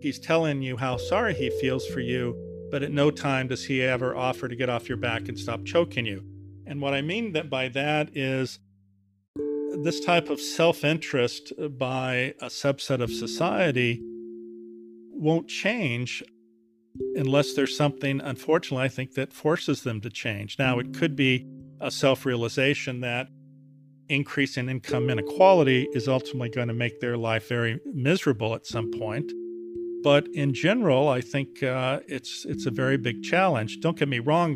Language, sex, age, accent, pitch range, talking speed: English, male, 50-69, American, 120-145 Hz, 160 wpm